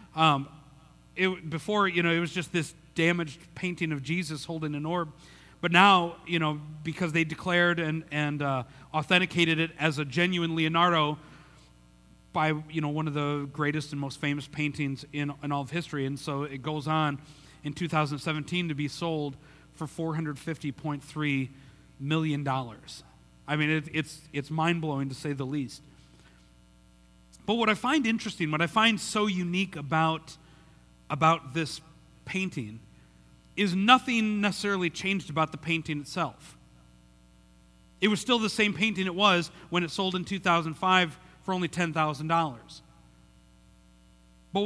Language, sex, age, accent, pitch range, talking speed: English, male, 40-59, American, 140-175 Hz, 145 wpm